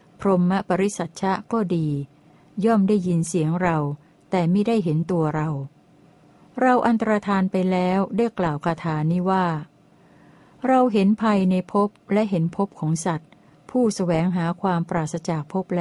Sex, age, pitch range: female, 60-79, 165-200 Hz